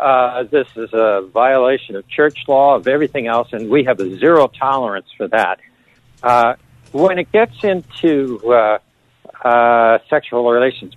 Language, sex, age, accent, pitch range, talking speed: English, male, 60-79, American, 120-160 Hz, 155 wpm